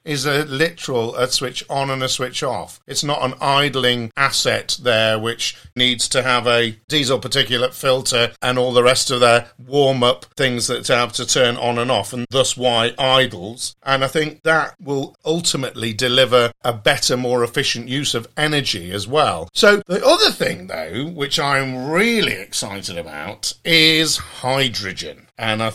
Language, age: English, 40-59